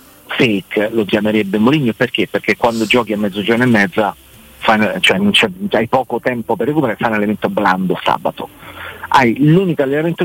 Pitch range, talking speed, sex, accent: 100-135 Hz, 145 wpm, male, native